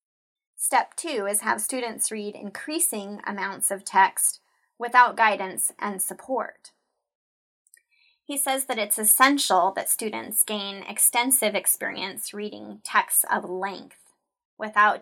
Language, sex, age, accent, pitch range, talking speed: English, female, 30-49, American, 195-255 Hz, 115 wpm